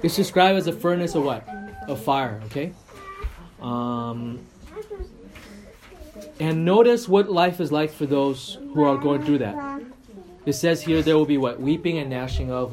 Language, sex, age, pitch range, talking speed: English, male, 20-39, 145-230 Hz, 165 wpm